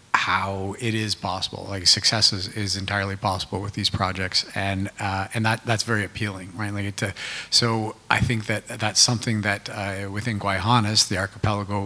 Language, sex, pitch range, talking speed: English, male, 100-110 Hz, 175 wpm